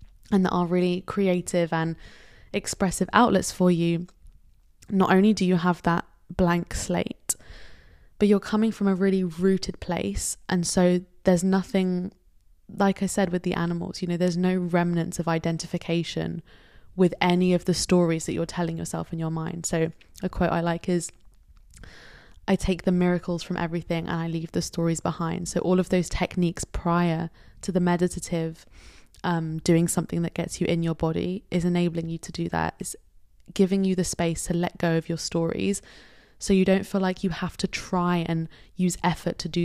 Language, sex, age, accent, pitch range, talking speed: English, female, 20-39, British, 165-185 Hz, 185 wpm